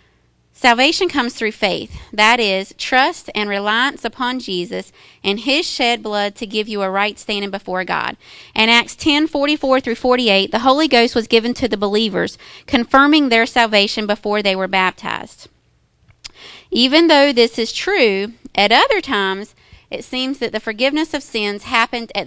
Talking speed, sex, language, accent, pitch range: 165 wpm, female, English, American, 195-240 Hz